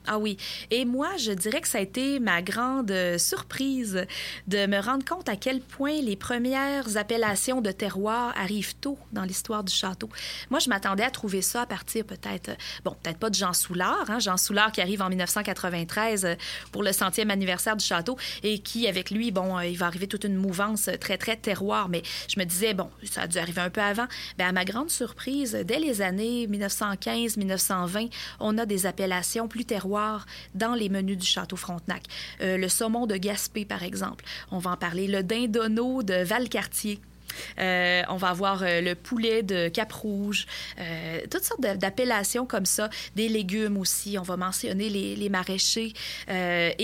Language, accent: French, Canadian